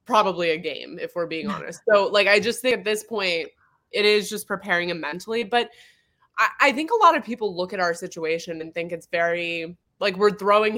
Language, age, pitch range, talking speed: English, 20-39, 170-220 Hz, 225 wpm